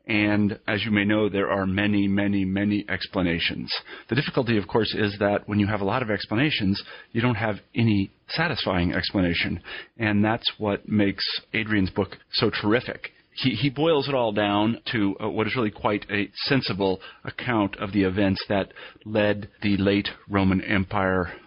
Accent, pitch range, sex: American, 95-115 Hz, male